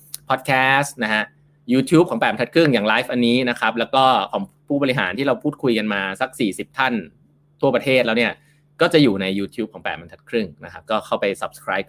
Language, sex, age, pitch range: Thai, male, 20-39, 115-145 Hz